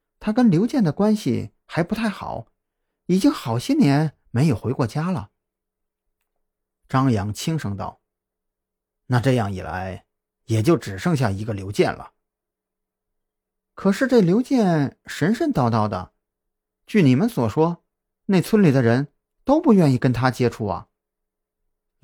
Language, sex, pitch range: Chinese, male, 105-155 Hz